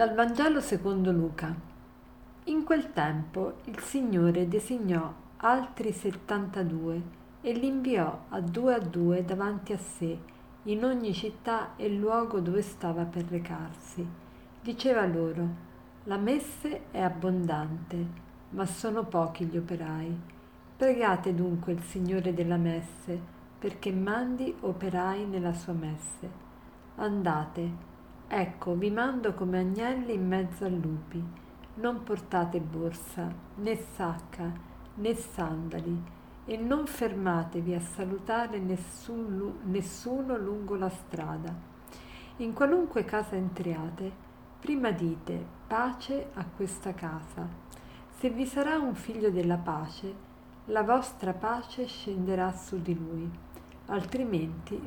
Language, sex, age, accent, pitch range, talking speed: Italian, female, 50-69, native, 170-225 Hz, 115 wpm